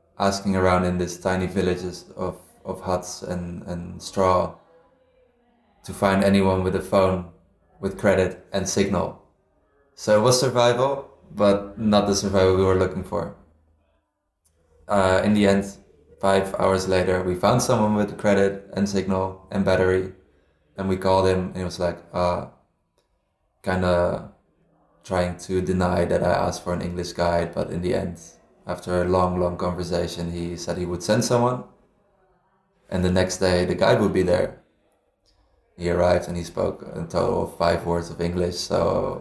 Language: English